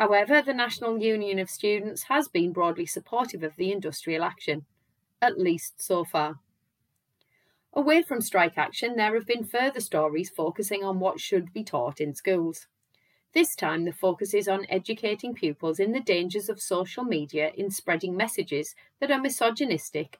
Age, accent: 30-49, British